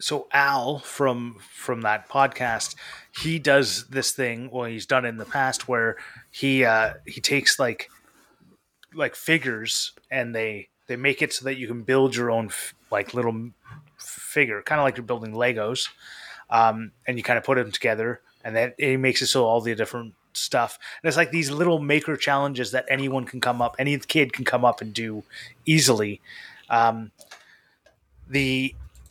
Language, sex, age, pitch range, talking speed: English, male, 30-49, 120-140 Hz, 180 wpm